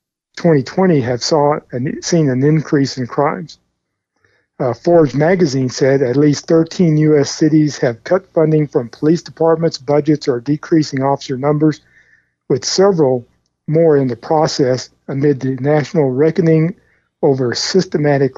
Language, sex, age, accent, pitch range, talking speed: English, male, 50-69, American, 125-150 Hz, 135 wpm